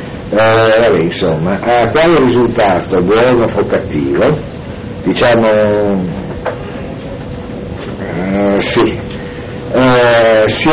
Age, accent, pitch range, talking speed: 60-79, native, 100-130 Hz, 80 wpm